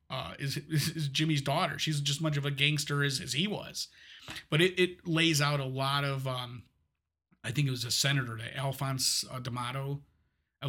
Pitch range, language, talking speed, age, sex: 125-140 Hz, English, 190 wpm, 30-49, male